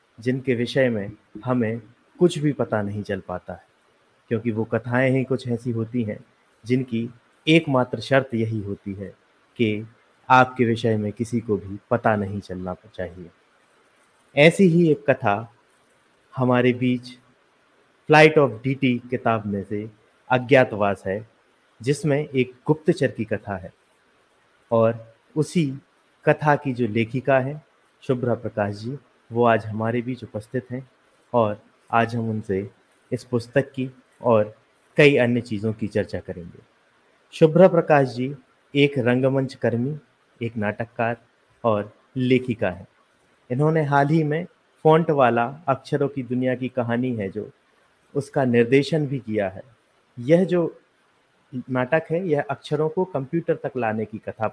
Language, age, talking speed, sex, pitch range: Hindi, 30-49, 140 wpm, male, 110-140 Hz